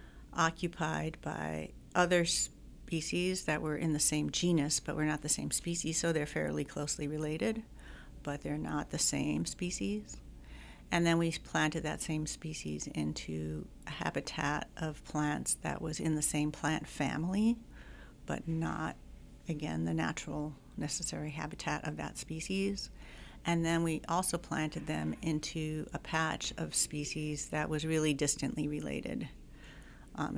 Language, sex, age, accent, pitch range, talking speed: English, female, 50-69, American, 145-160 Hz, 145 wpm